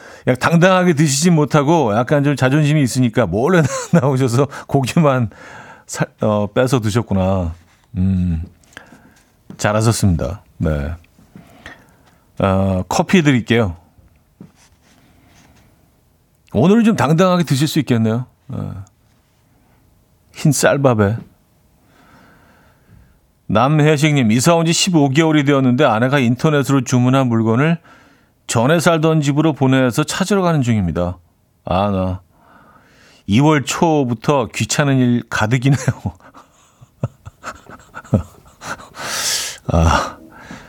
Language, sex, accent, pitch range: Korean, male, native, 110-155 Hz